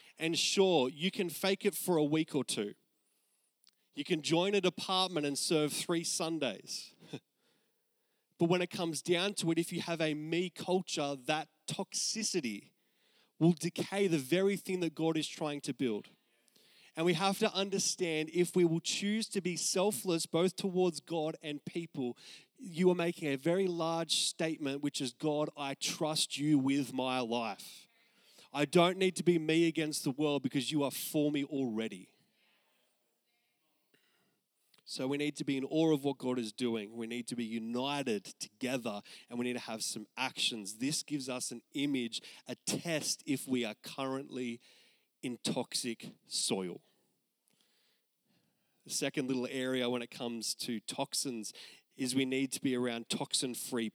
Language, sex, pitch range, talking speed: English, male, 135-175 Hz, 165 wpm